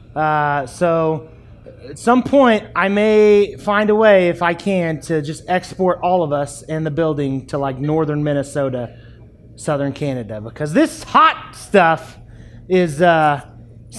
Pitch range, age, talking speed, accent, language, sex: 145-205 Hz, 30-49, 145 wpm, American, English, male